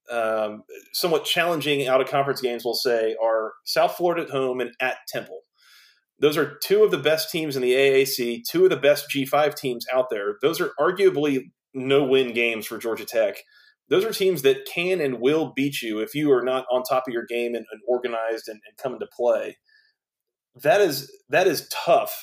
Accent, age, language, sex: American, 30-49, English, male